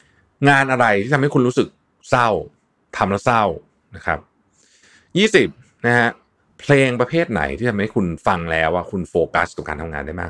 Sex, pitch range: male, 90-125 Hz